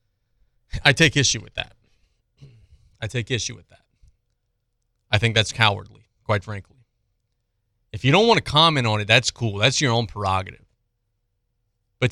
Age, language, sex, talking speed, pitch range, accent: 30-49, English, male, 155 wpm, 115-175 Hz, American